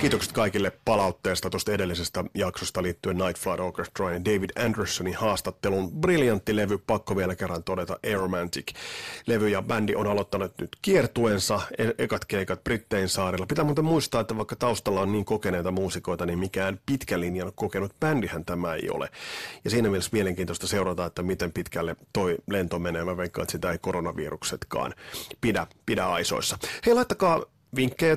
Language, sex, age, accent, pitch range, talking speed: Finnish, male, 30-49, native, 95-120 Hz, 155 wpm